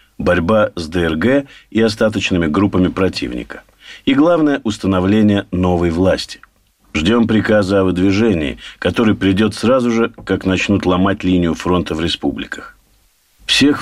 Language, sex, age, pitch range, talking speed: Russian, male, 50-69, 95-125 Hz, 120 wpm